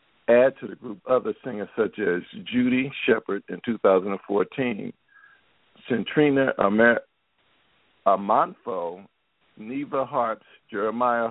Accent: American